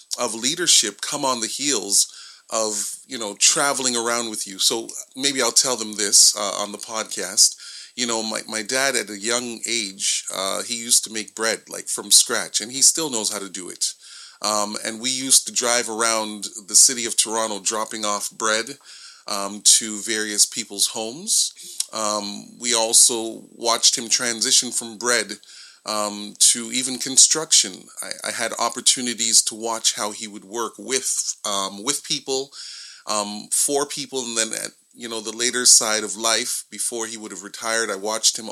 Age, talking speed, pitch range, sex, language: 30-49, 180 wpm, 105-125 Hz, male, English